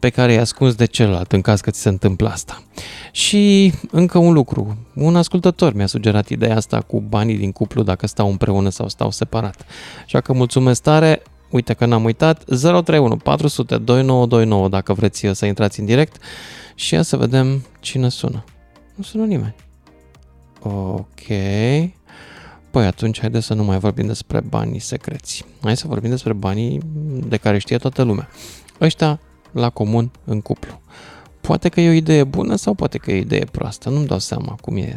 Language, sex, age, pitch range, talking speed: Romanian, male, 20-39, 105-145 Hz, 175 wpm